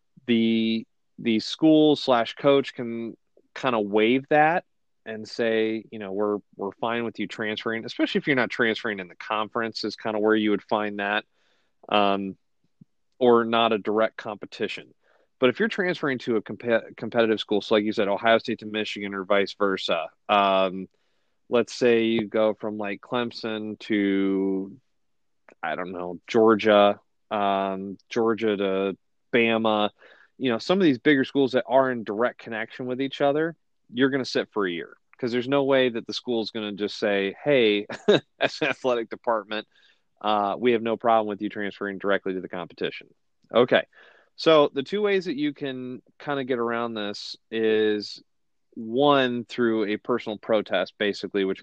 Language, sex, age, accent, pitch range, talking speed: English, male, 30-49, American, 100-125 Hz, 175 wpm